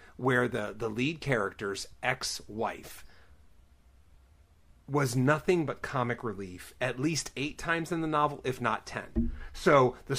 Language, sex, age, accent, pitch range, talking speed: English, male, 30-49, American, 110-155 Hz, 135 wpm